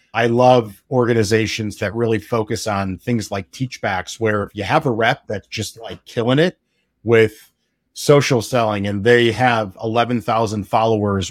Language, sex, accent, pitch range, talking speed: English, male, American, 110-125 Hz, 155 wpm